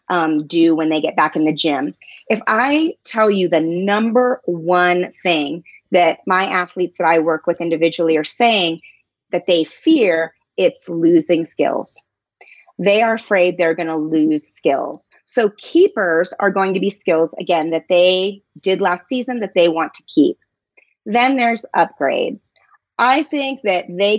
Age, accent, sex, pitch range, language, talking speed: 30-49, American, female, 170-235 Hz, English, 165 wpm